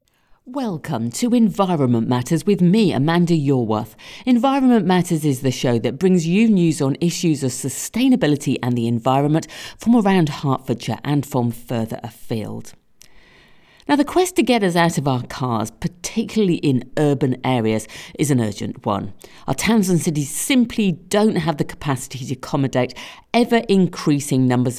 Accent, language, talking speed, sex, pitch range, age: British, English, 150 wpm, female, 125-190 Hz, 50-69